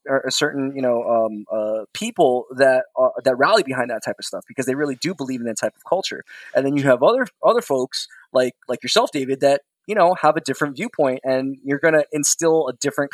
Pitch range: 130-165 Hz